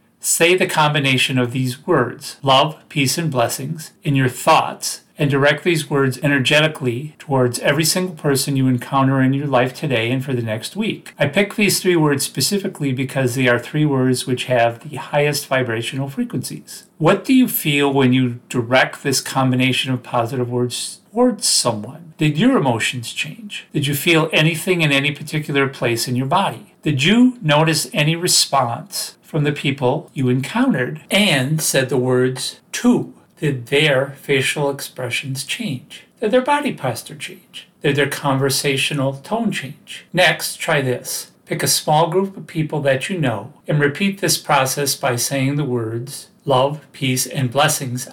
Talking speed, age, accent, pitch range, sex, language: 165 wpm, 40-59, American, 130-165 Hz, male, English